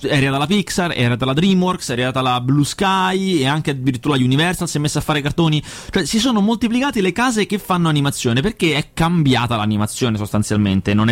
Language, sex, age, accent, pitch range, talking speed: Italian, male, 30-49, native, 125-180 Hz, 190 wpm